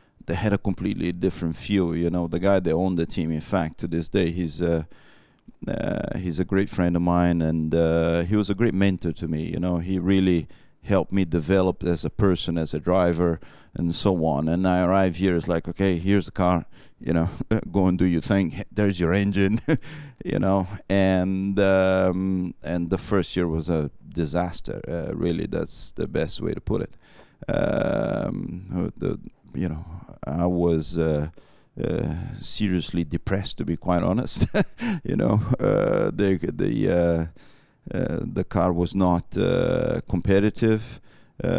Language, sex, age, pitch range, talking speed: English, male, 40-59, 85-95 Hz, 175 wpm